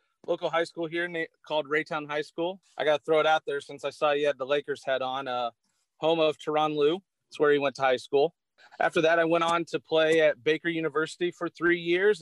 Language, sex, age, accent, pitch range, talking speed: English, male, 30-49, American, 145-170 Hz, 235 wpm